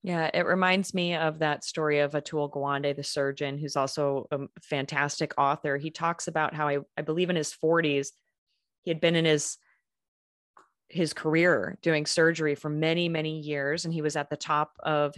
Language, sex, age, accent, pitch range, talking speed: English, female, 30-49, American, 150-165 Hz, 185 wpm